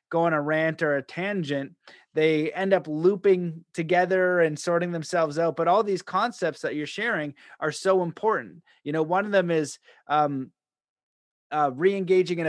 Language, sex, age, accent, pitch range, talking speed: English, male, 30-49, American, 145-175 Hz, 175 wpm